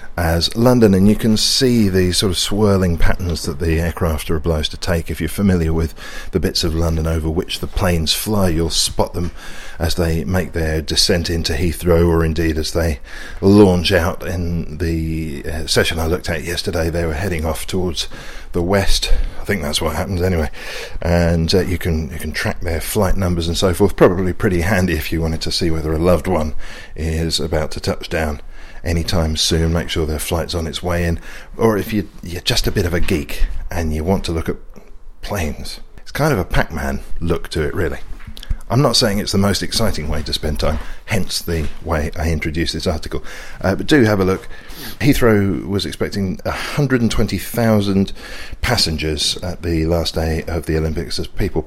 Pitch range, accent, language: 80-95 Hz, British, English